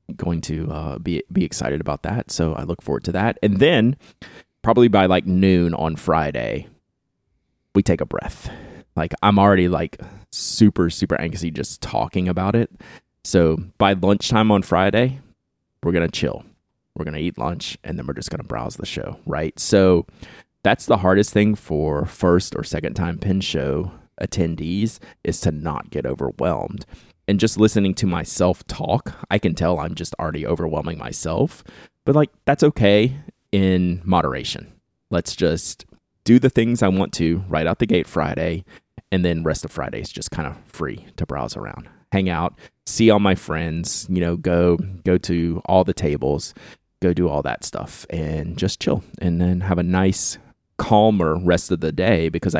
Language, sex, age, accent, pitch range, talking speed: English, male, 30-49, American, 80-100 Hz, 175 wpm